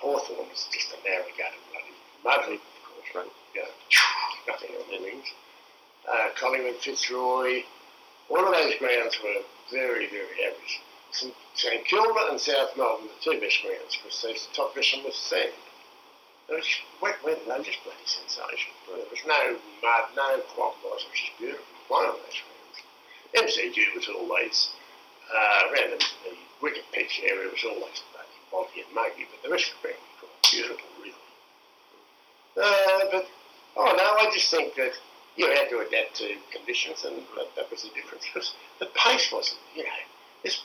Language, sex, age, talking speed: English, male, 60-79, 160 wpm